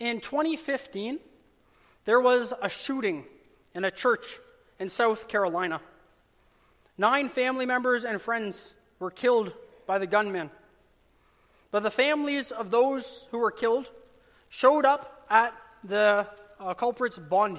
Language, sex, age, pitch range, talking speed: English, male, 30-49, 195-255 Hz, 125 wpm